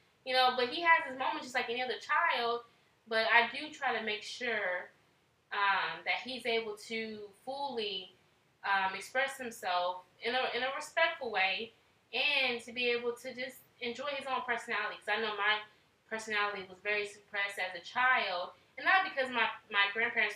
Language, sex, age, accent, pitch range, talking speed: English, female, 20-39, American, 205-255 Hz, 180 wpm